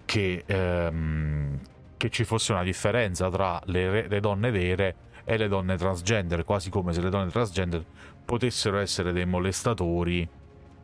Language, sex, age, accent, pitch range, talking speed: Italian, male, 40-59, native, 85-105 Hz, 140 wpm